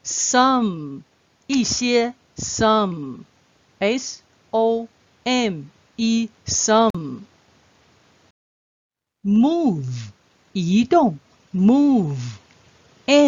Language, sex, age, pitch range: Chinese, female, 50-69, 175-245 Hz